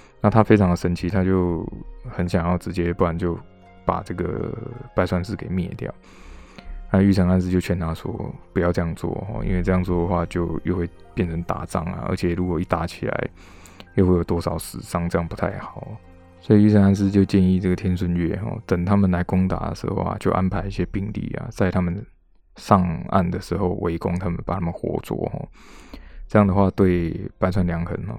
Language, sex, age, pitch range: Chinese, male, 20-39, 85-100 Hz